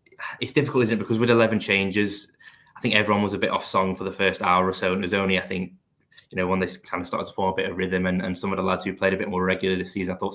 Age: 10-29